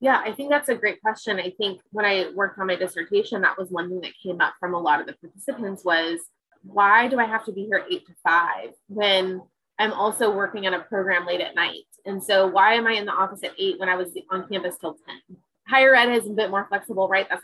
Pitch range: 190-245 Hz